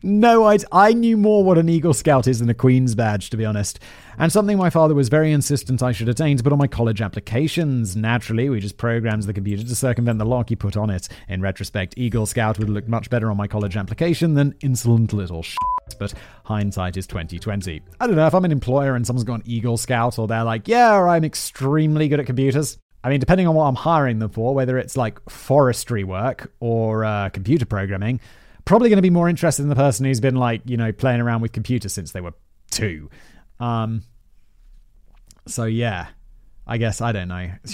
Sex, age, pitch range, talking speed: male, 30-49, 110-160 Hz, 220 wpm